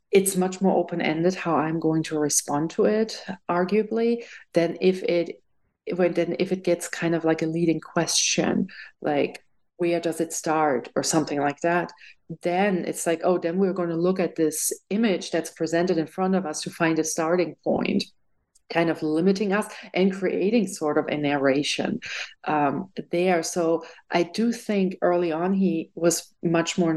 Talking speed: 180 wpm